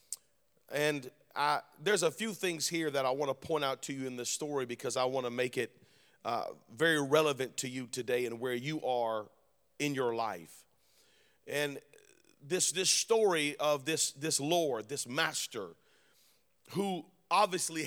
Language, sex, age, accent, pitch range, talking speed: English, male, 40-59, American, 145-185 Hz, 165 wpm